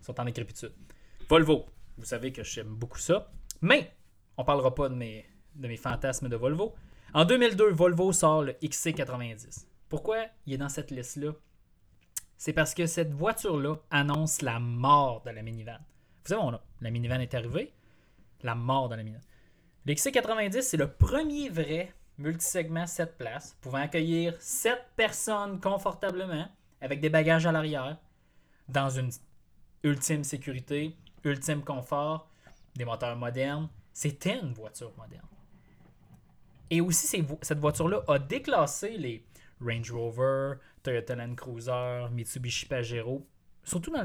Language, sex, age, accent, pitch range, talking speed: French, male, 20-39, Canadian, 125-160 Hz, 145 wpm